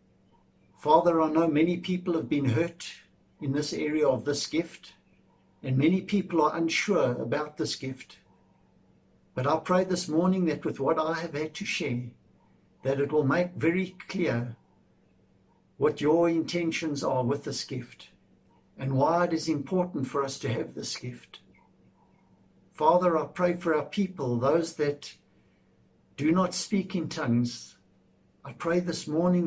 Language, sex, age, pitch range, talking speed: English, male, 60-79, 135-170 Hz, 155 wpm